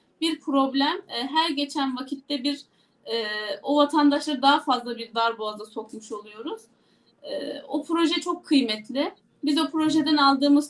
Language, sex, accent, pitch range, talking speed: Turkish, female, native, 265-310 Hz, 125 wpm